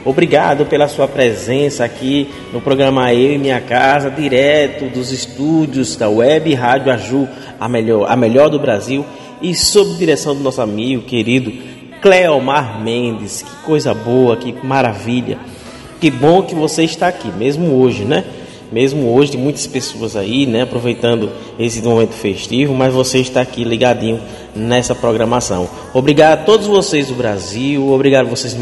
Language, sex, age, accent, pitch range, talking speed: Portuguese, male, 20-39, Brazilian, 110-135 Hz, 155 wpm